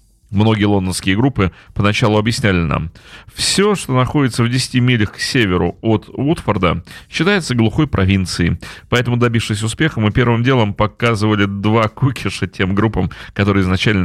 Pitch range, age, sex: 100-125 Hz, 30-49, male